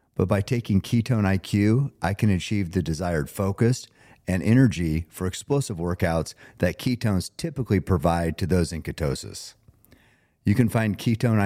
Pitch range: 90-115 Hz